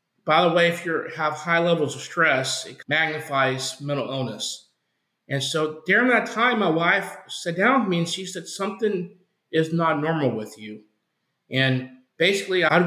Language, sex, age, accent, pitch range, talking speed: English, male, 50-69, American, 140-170 Hz, 175 wpm